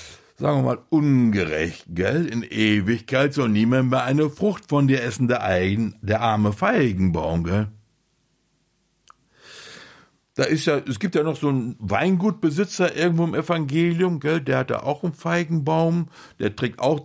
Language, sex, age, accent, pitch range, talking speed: German, male, 60-79, German, 115-180 Hz, 155 wpm